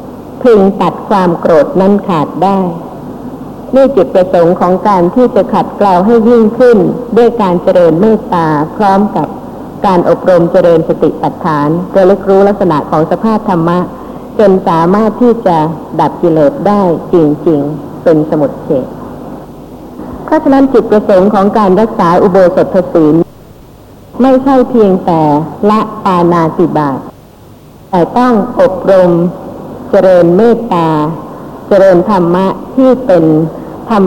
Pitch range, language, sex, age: 170-225 Hz, Thai, female, 60-79